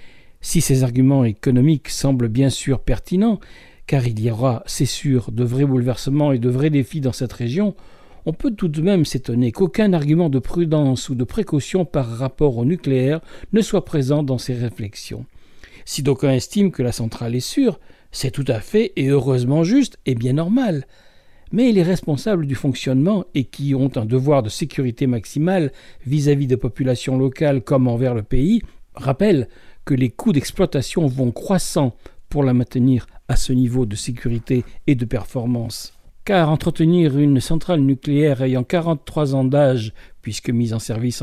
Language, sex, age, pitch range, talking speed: French, male, 60-79, 125-160 Hz, 170 wpm